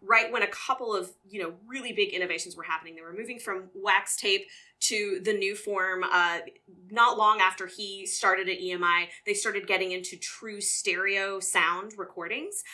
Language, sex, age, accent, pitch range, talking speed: English, female, 20-39, American, 185-230 Hz, 180 wpm